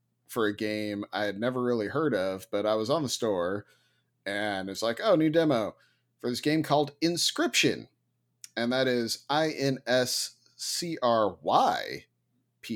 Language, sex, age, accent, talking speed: English, male, 30-49, American, 170 wpm